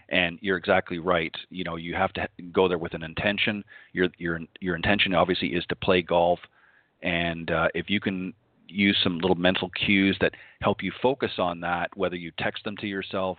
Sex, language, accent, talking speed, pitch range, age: male, English, American, 200 wpm, 85-95 Hz, 40-59